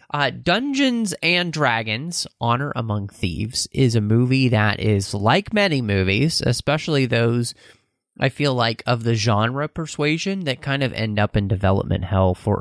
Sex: male